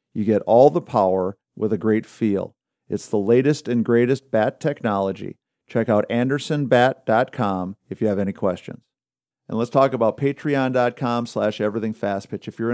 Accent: American